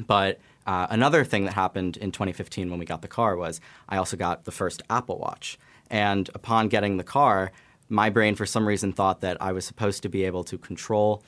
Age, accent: 20-39, American